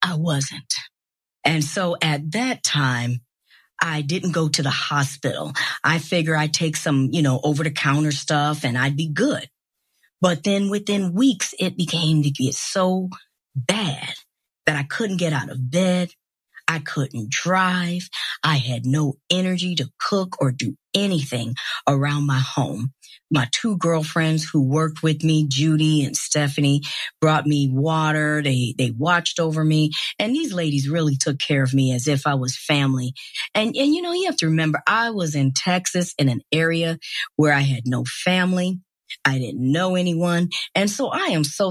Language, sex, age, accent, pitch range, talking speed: English, female, 40-59, American, 140-175 Hz, 170 wpm